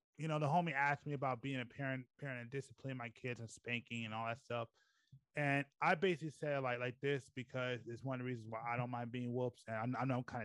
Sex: male